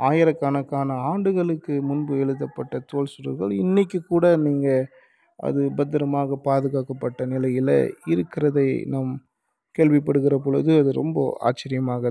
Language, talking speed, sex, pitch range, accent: Tamil, 95 wpm, male, 135-160 Hz, native